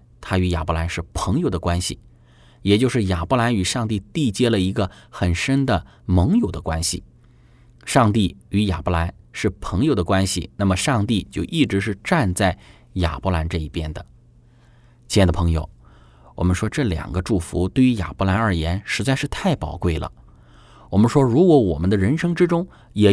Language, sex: Chinese, male